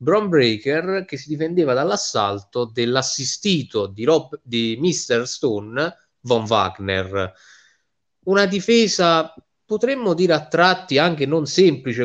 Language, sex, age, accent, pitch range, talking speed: Italian, male, 20-39, native, 120-160 Hz, 115 wpm